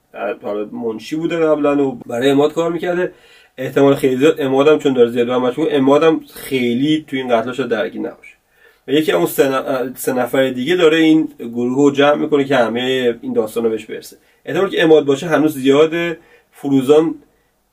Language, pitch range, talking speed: Persian, 120-155 Hz, 155 wpm